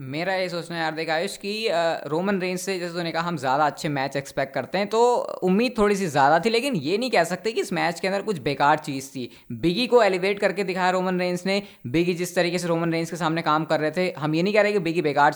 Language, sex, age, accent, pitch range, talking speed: Hindi, female, 20-39, native, 155-190 Hz, 275 wpm